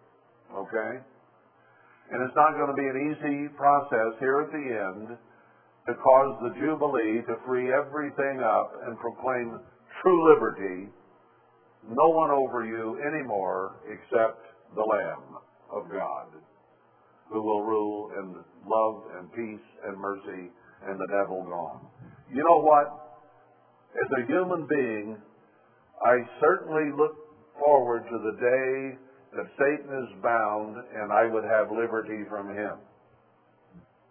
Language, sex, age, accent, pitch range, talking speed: English, male, 60-79, American, 110-140 Hz, 130 wpm